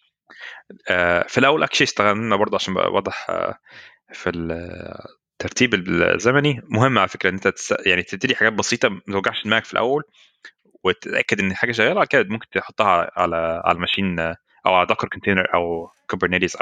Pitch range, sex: 95-125 Hz, male